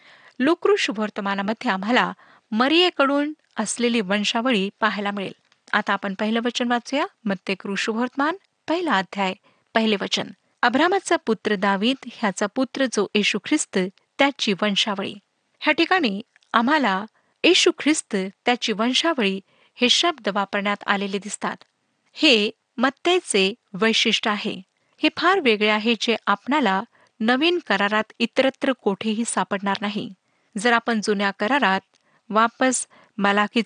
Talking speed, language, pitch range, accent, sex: 110 wpm, Marathi, 205-275 Hz, native, female